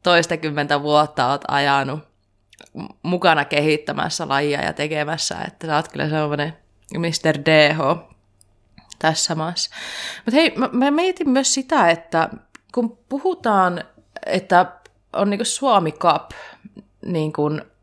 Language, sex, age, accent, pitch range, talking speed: Finnish, female, 20-39, native, 150-195 Hz, 110 wpm